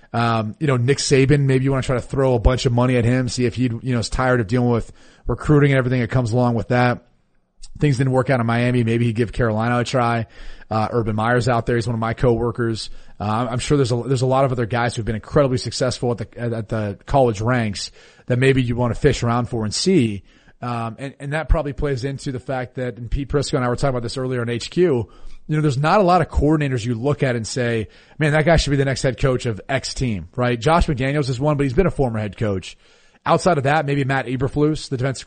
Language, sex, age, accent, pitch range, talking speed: English, male, 30-49, American, 120-135 Hz, 265 wpm